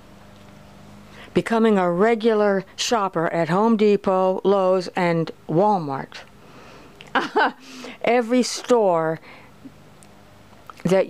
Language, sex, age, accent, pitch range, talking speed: English, female, 60-79, American, 170-210 Hz, 70 wpm